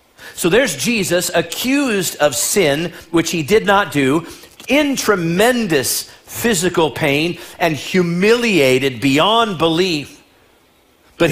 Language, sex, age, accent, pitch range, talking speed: English, male, 50-69, American, 155-210 Hz, 105 wpm